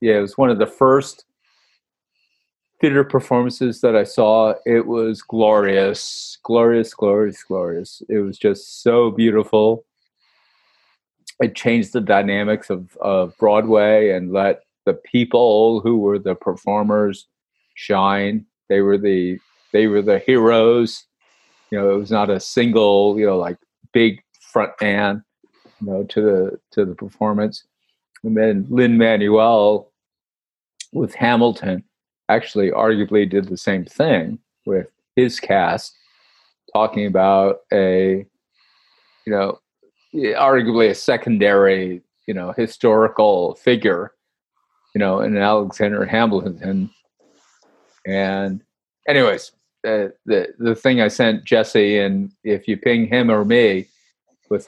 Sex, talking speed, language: male, 125 wpm, English